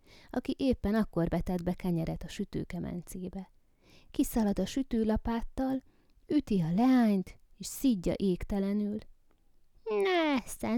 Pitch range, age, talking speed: 160-225 Hz, 20-39, 100 wpm